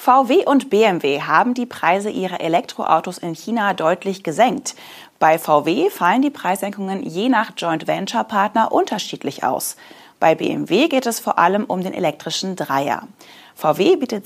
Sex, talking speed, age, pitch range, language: female, 145 wpm, 30-49, 165-250 Hz, German